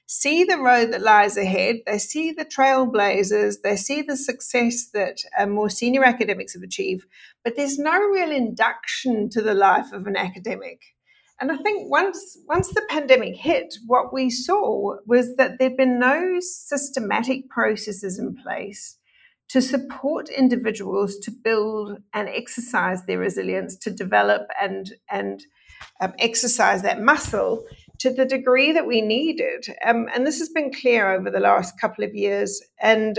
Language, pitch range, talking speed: English, 205-270 Hz, 160 wpm